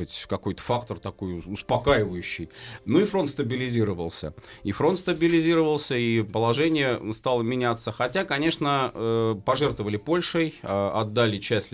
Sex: male